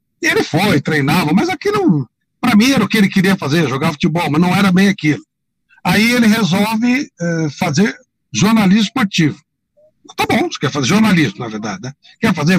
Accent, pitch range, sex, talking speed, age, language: Brazilian, 155-205 Hz, male, 185 wpm, 60-79, Portuguese